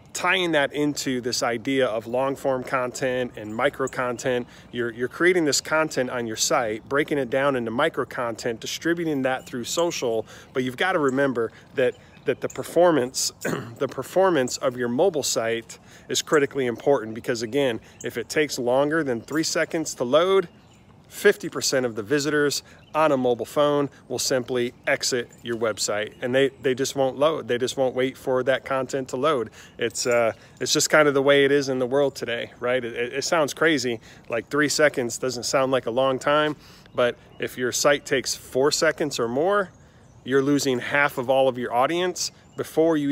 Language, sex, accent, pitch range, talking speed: English, male, American, 120-145 Hz, 185 wpm